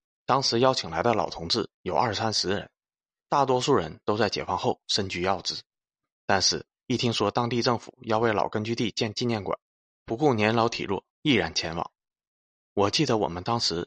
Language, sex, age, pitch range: Chinese, male, 20-39, 90-115 Hz